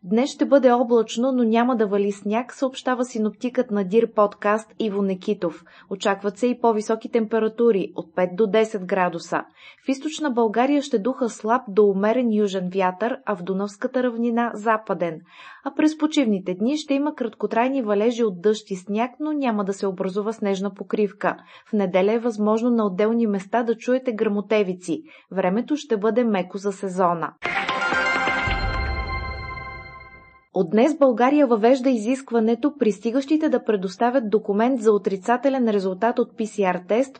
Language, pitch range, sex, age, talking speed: Bulgarian, 200-245 Hz, female, 20-39, 150 wpm